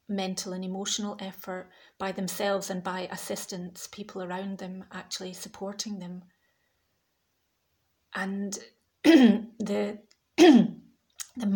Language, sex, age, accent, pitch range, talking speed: English, female, 30-49, British, 195-215 Hz, 95 wpm